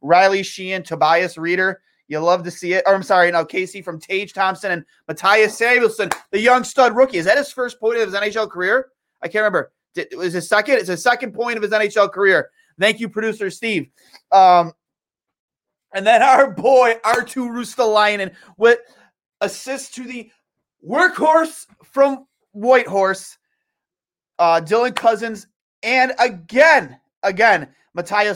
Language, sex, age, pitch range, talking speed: English, male, 30-49, 180-230 Hz, 150 wpm